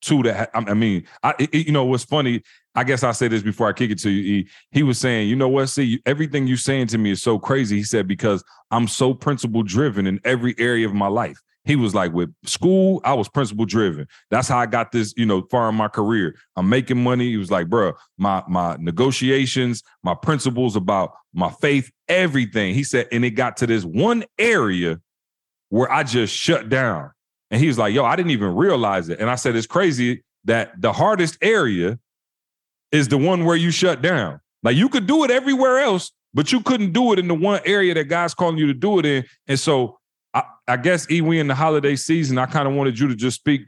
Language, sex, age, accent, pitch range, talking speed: English, male, 30-49, American, 110-150 Hz, 230 wpm